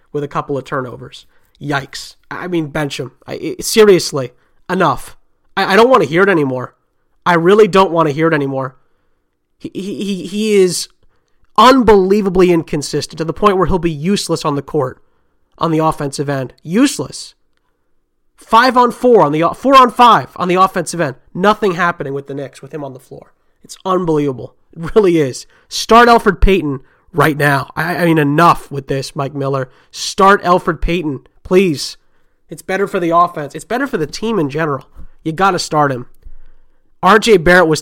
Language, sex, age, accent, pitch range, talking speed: English, male, 30-49, American, 140-185 Hz, 180 wpm